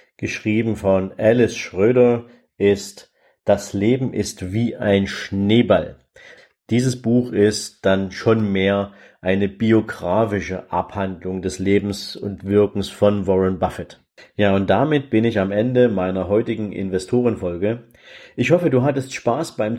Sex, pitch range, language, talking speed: male, 100-125 Hz, German, 130 wpm